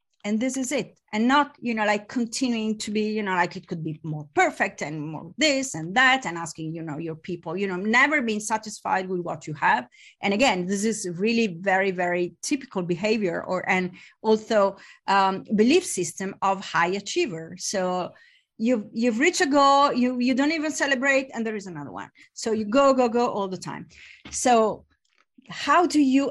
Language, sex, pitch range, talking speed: English, female, 185-250 Hz, 195 wpm